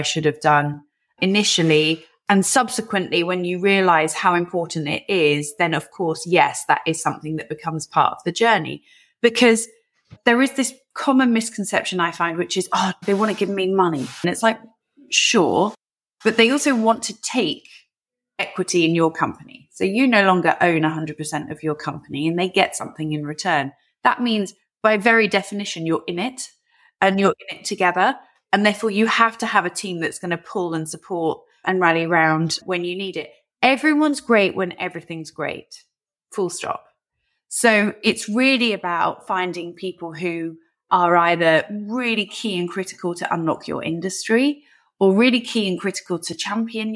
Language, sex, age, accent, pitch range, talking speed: English, female, 30-49, British, 165-225 Hz, 175 wpm